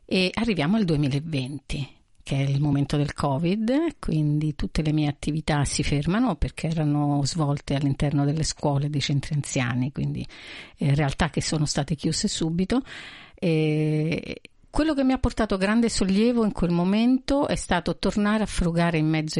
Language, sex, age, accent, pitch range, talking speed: Italian, female, 50-69, native, 150-205 Hz, 160 wpm